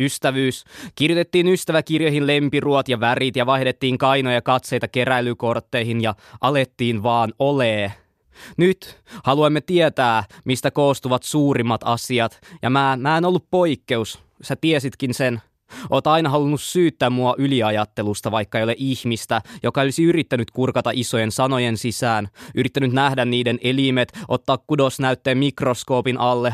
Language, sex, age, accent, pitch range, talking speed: Finnish, male, 20-39, native, 120-145 Hz, 125 wpm